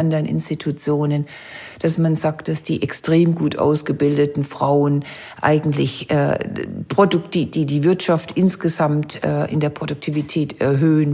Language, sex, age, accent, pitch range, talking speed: German, female, 60-79, German, 145-165 Hz, 120 wpm